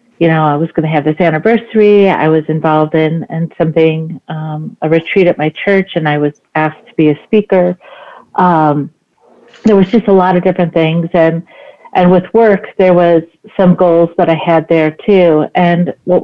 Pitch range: 165-195 Hz